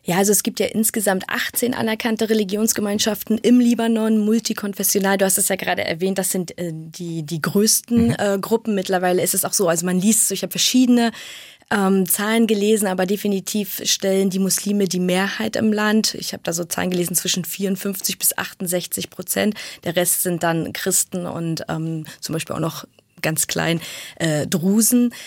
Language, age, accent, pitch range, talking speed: German, 20-39, German, 180-215 Hz, 180 wpm